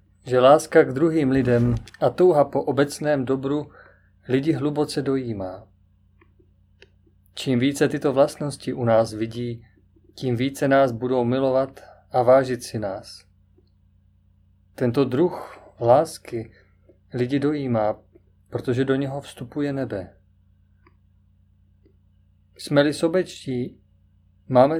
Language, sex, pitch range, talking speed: Czech, male, 95-140 Hz, 100 wpm